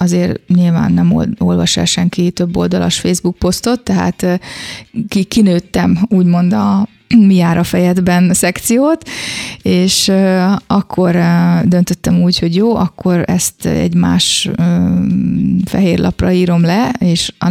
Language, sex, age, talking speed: Hungarian, female, 30-49, 115 wpm